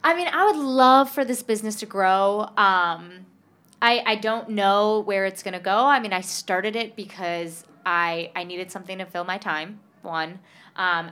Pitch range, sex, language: 175-225 Hz, female, English